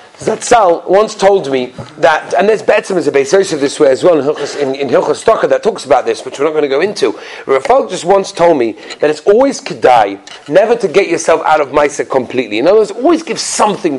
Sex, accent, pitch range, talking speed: male, British, 180-275 Hz, 225 wpm